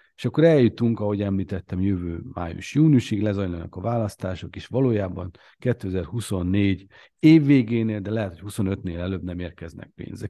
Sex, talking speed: male, 130 wpm